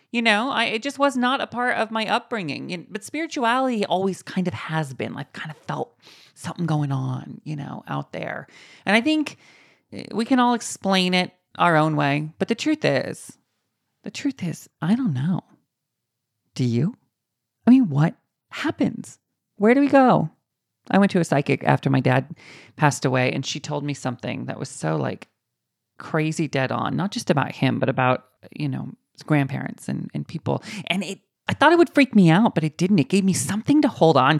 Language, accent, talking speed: English, American, 200 wpm